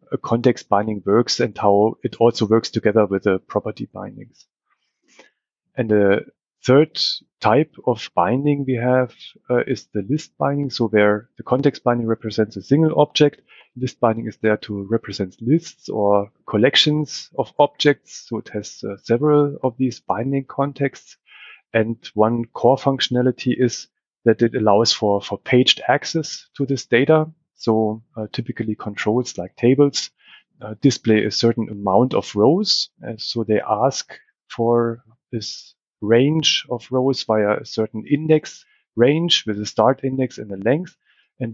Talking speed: 155 wpm